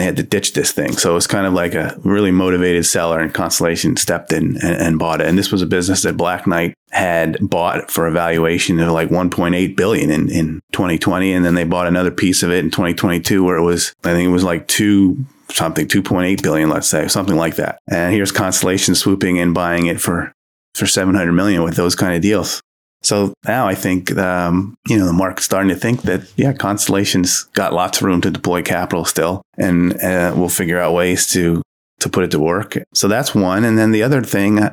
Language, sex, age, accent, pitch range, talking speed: English, male, 30-49, American, 85-100 Hz, 225 wpm